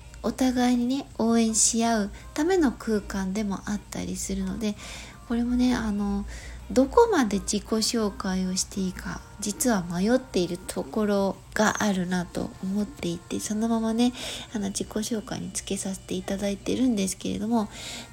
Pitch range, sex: 205-245 Hz, female